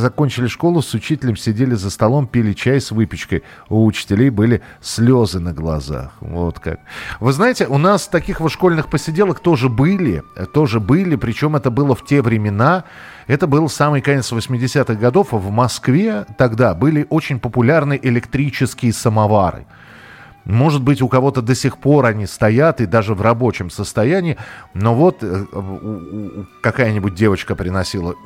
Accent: native